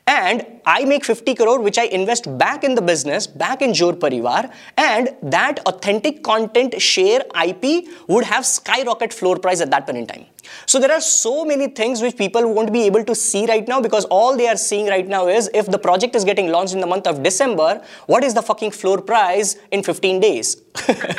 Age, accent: 20-39, Indian